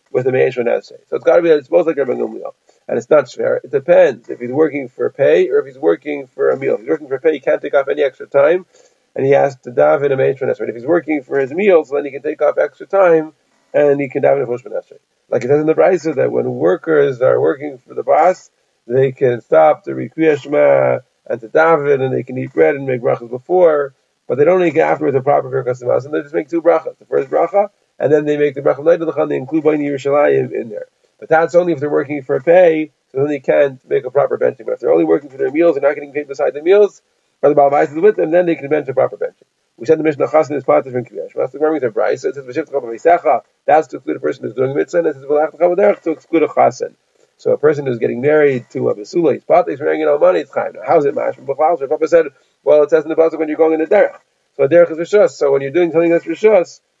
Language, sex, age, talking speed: English, male, 40-59, 275 wpm